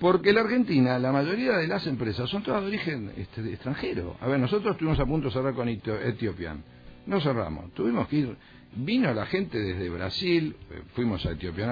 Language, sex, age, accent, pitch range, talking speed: Spanish, male, 50-69, Argentinian, 100-145 Hz, 205 wpm